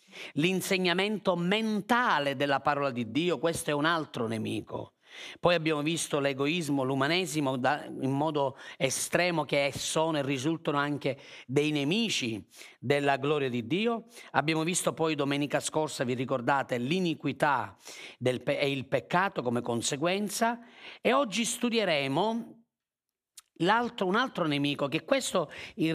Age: 40-59